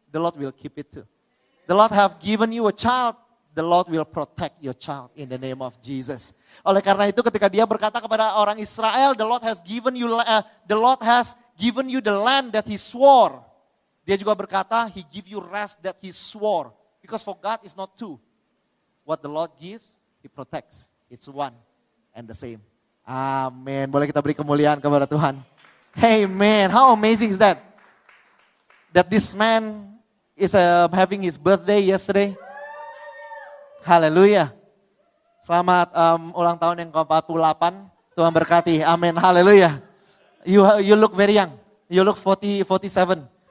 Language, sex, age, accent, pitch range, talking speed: Indonesian, male, 30-49, native, 160-215 Hz, 160 wpm